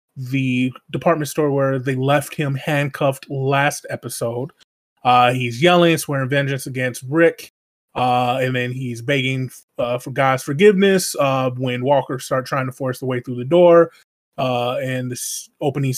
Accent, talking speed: American, 160 wpm